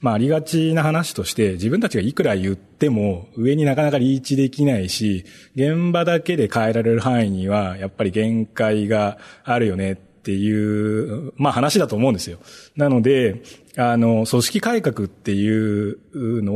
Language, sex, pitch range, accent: Japanese, male, 100-145 Hz, native